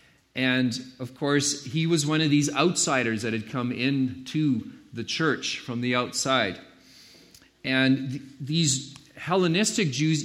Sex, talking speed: male, 130 wpm